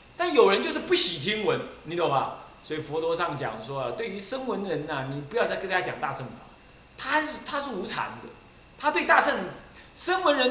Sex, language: male, Chinese